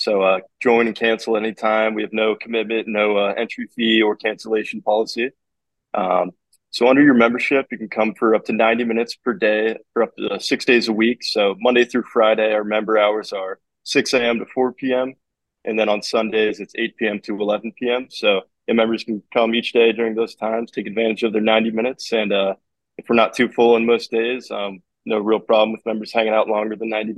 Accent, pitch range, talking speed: American, 110-115 Hz, 220 wpm